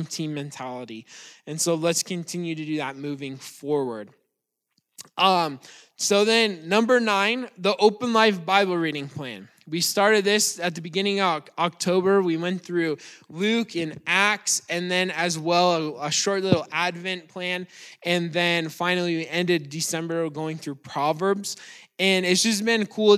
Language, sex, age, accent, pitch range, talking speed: English, male, 20-39, American, 165-195 Hz, 155 wpm